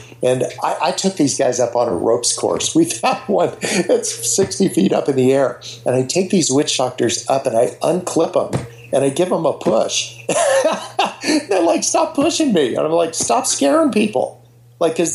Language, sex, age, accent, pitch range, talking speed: English, male, 50-69, American, 120-180 Hz, 200 wpm